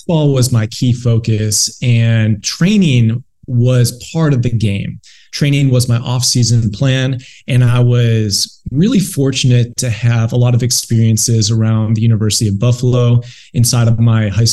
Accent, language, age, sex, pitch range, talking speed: American, English, 20-39, male, 115-135 Hz, 155 wpm